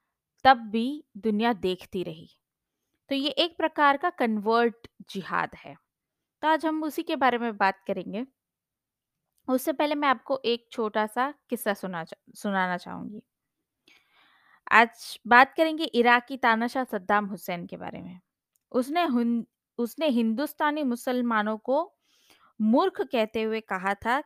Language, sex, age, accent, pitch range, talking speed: Hindi, female, 20-39, native, 210-270 Hz, 135 wpm